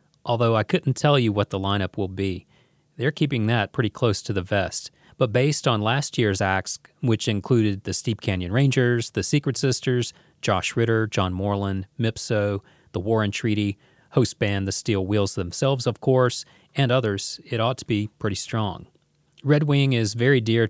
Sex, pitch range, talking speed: male, 100-125 Hz, 180 wpm